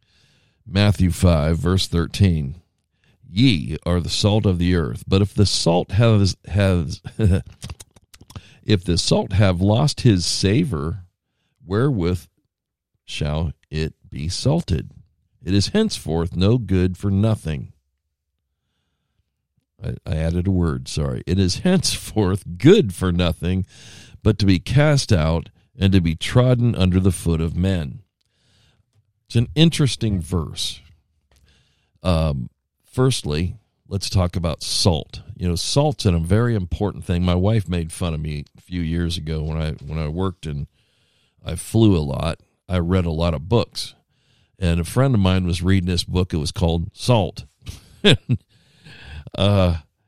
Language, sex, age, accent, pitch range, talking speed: English, male, 50-69, American, 85-110 Hz, 145 wpm